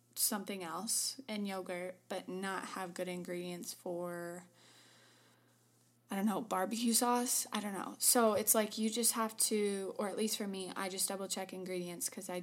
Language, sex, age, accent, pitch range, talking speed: English, female, 20-39, American, 175-205 Hz, 180 wpm